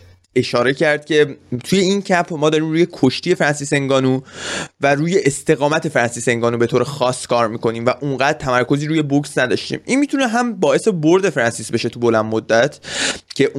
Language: Persian